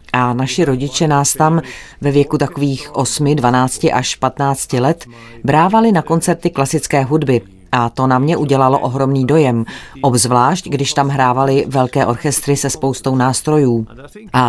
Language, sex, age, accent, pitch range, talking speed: Czech, female, 30-49, native, 130-160 Hz, 145 wpm